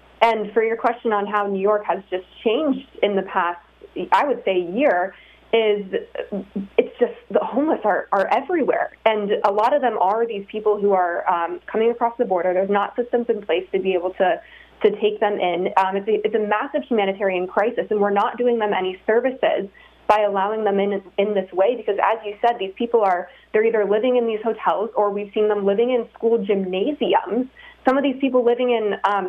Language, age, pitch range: English, 20-39, 195-235 Hz